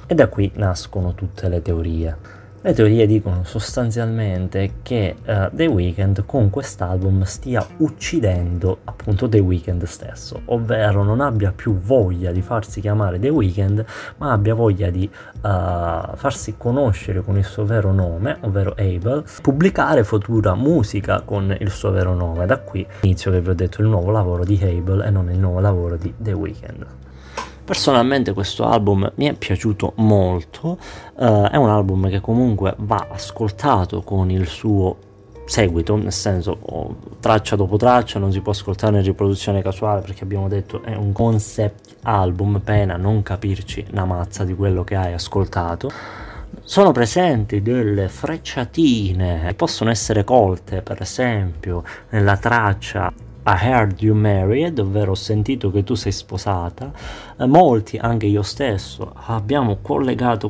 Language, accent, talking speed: Italian, native, 150 wpm